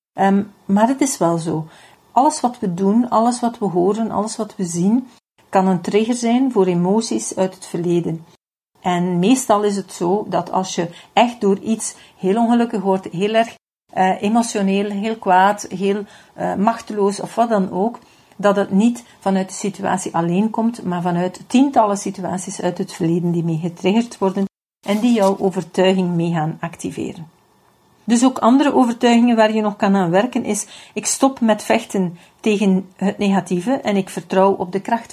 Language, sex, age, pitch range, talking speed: Dutch, female, 50-69, 185-225 Hz, 175 wpm